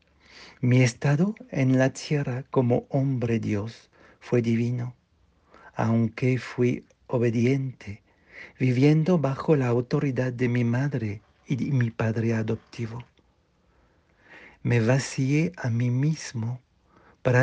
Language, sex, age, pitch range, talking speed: Spanish, male, 60-79, 115-140 Hz, 105 wpm